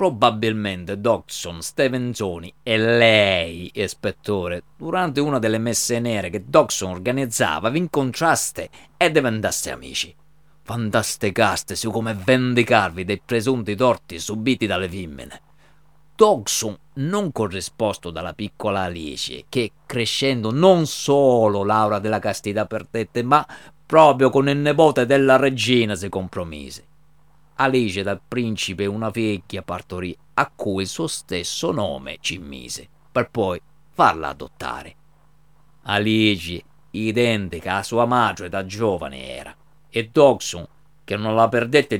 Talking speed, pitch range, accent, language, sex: 120 wpm, 100-135 Hz, native, Italian, male